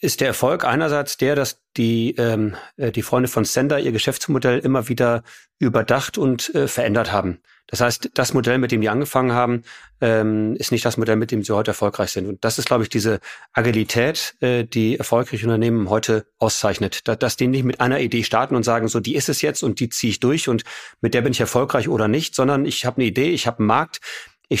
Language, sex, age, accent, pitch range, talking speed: German, male, 30-49, German, 115-130 Hz, 225 wpm